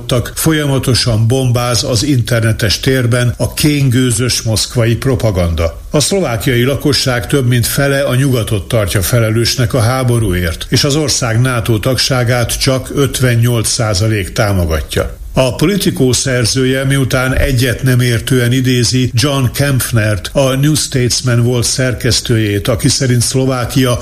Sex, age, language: male, 60-79, Hungarian